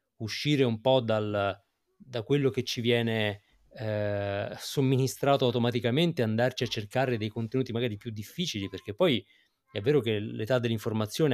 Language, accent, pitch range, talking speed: Italian, native, 110-140 Hz, 145 wpm